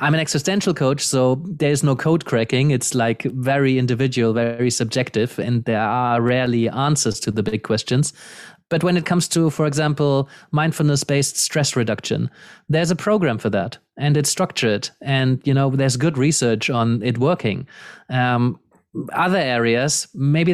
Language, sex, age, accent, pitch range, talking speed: English, male, 30-49, German, 120-150 Hz, 165 wpm